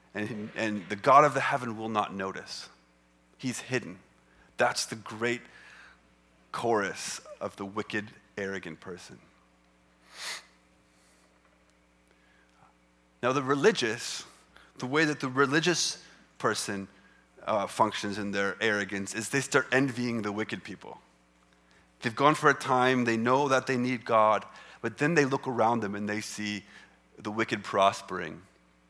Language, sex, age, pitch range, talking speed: English, male, 30-49, 95-120 Hz, 135 wpm